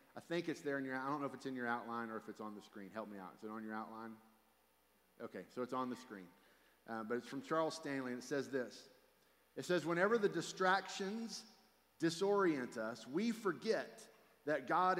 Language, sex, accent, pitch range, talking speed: English, male, American, 115-170 Hz, 220 wpm